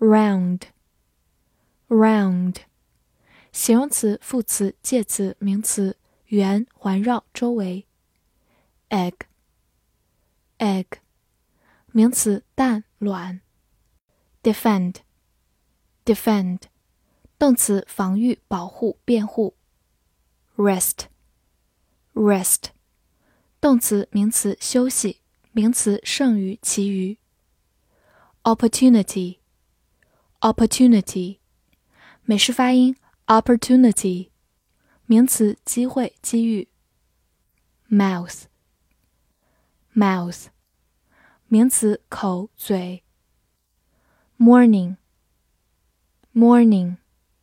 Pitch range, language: 185-230 Hz, Chinese